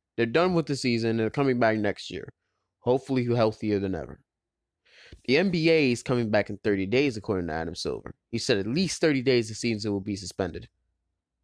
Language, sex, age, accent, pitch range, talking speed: English, male, 20-39, American, 100-135 Hz, 195 wpm